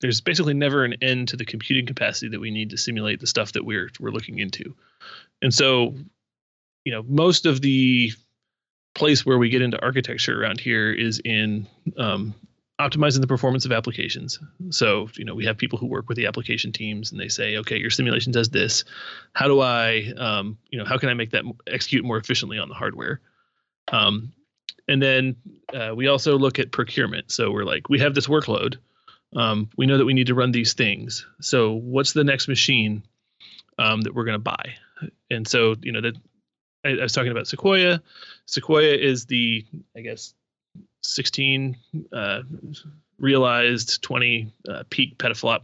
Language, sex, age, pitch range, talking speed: English, male, 30-49, 110-135 Hz, 185 wpm